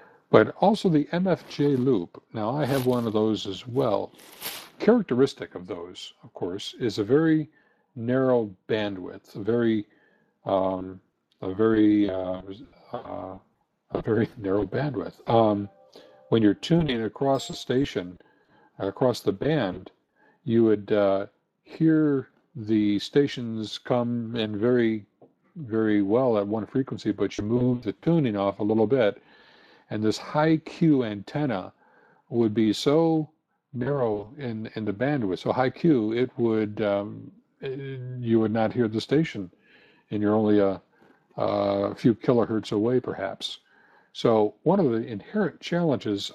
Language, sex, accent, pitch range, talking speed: English, male, American, 105-135 Hz, 140 wpm